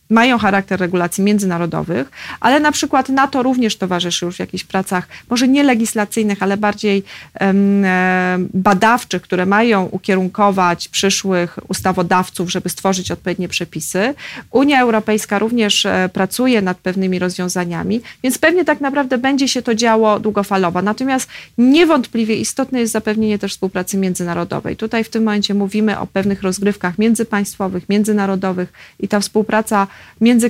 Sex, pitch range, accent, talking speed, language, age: female, 180-215 Hz, native, 135 wpm, Polish, 30-49